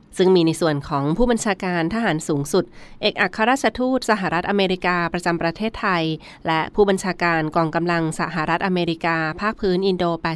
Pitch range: 160-190 Hz